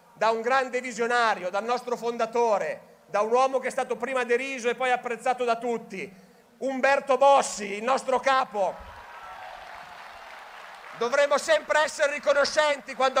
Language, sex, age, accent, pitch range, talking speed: Italian, male, 40-59, native, 235-290 Hz, 135 wpm